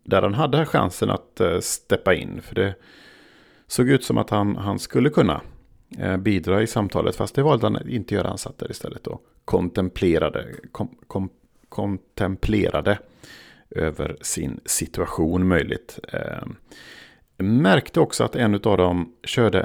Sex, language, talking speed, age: male, Swedish, 145 wpm, 40-59